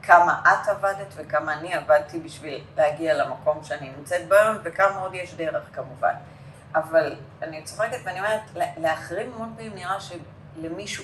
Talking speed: 150 wpm